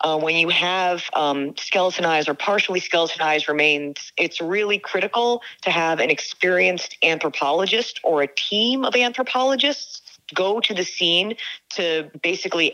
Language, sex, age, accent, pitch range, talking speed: English, female, 30-49, American, 155-190 Hz, 135 wpm